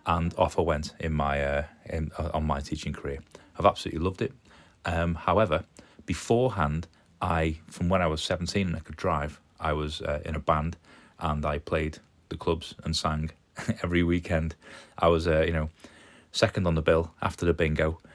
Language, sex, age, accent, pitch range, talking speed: English, male, 30-49, British, 75-85 Hz, 190 wpm